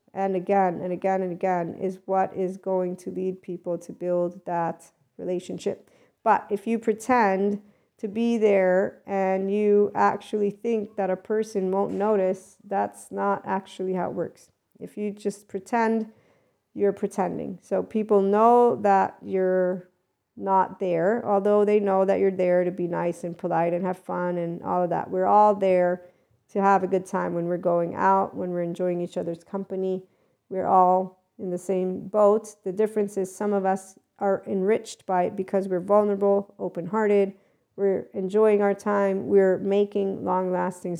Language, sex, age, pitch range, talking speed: English, female, 50-69, 180-205 Hz, 170 wpm